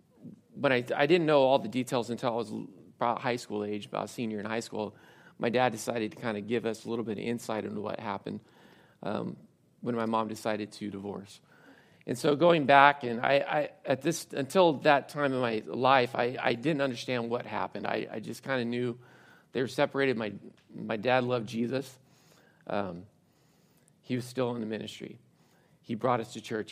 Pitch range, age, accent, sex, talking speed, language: 110-140 Hz, 40-59, American, male, 200 wpm, English